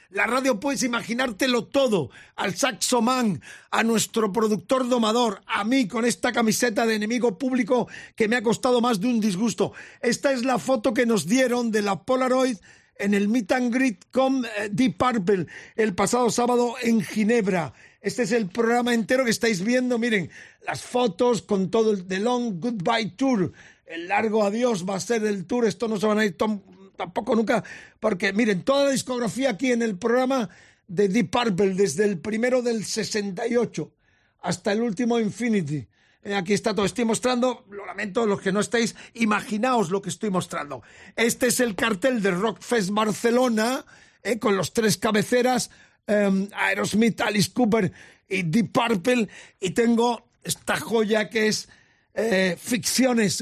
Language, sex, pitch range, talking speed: Spanish, male, 205-245 Hz, 170 wpm